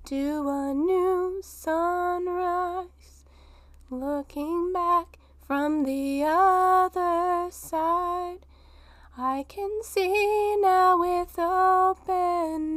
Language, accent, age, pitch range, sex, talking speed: English, American, 20-39, 285-360 Hz, female, 75 wpm